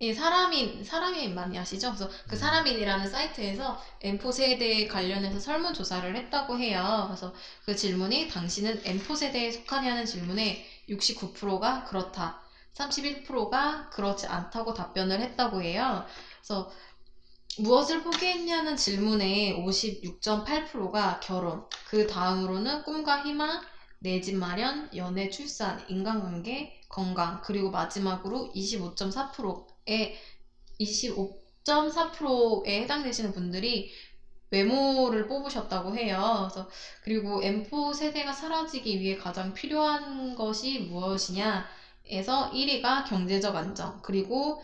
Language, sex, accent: Korean, female, native